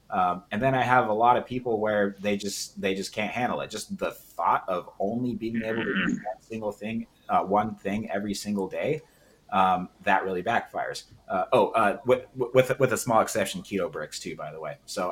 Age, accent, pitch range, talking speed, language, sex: 30-49, American, 100-130 Hz, 220 wpm, English, male